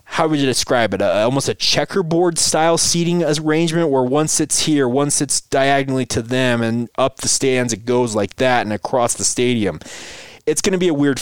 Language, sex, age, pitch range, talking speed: English, male, 20-39, 120-150 Hz, 210 wpm